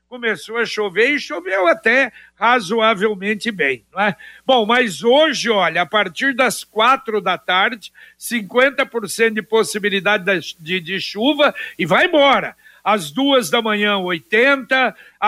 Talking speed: 130 wpm